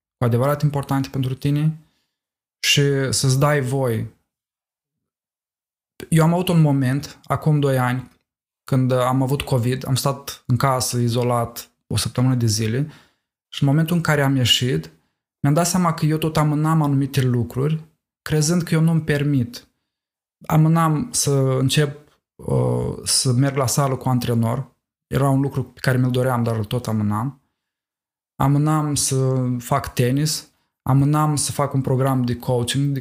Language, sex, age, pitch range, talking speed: Romanian, male, 20-39, 125-150 Hz, 150 wpm